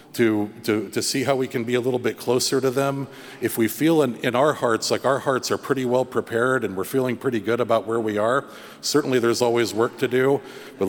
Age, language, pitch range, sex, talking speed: 50-69, English, 110-130 Hz, male, 240 wpm